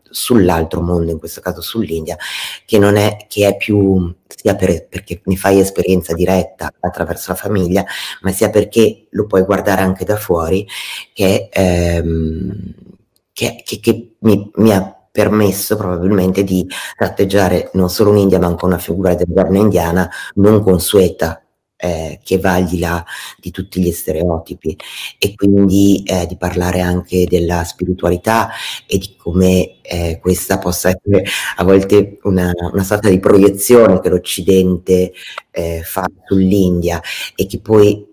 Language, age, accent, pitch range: Italian, 30-49, native, 90-100 Hz